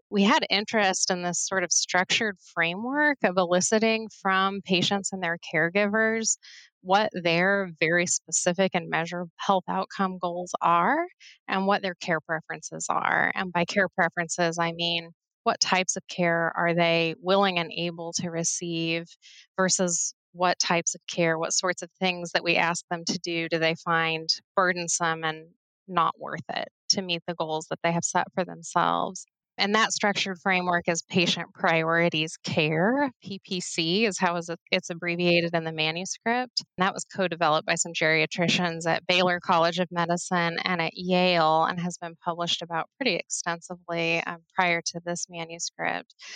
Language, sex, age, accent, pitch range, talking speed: English, female, 20-39, American, 170-190 Hz, 160 wpm